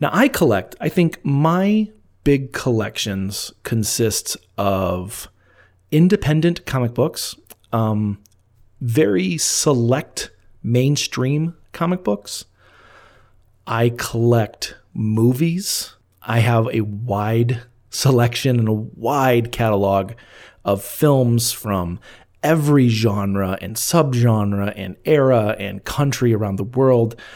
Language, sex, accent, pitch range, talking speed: English, male, American, 105-140 Hz, 100 wpm